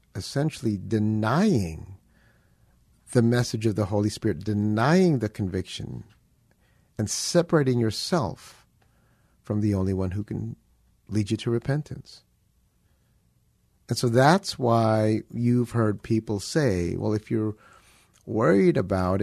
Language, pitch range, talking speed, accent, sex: English, 100-125 Hz, 115 wpm, American, male